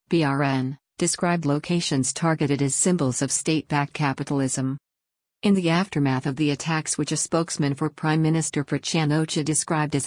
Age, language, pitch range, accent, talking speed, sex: 50-69, English, 140-160 Hz, American, 145 wpm, female